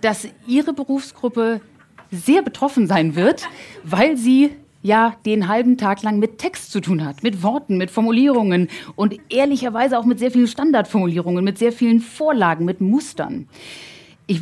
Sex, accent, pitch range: female, German, 185-235 Hz